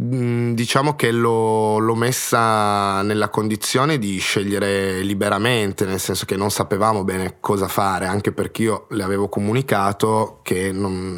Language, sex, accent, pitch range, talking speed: Italian, male, native, 95-110 Hz, 130 wpm